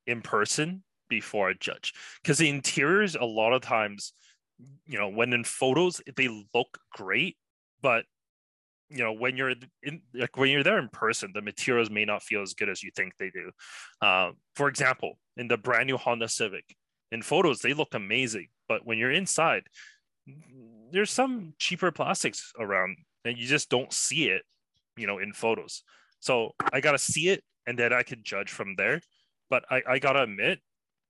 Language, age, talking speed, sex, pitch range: English, 20-39, 180 wpm, male, 115-145 Hz